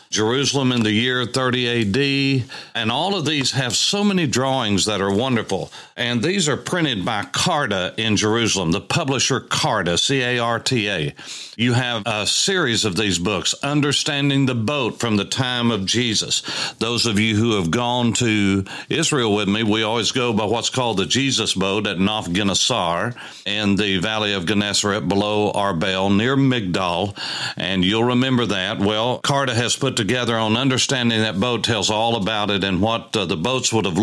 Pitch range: 100-125 Hz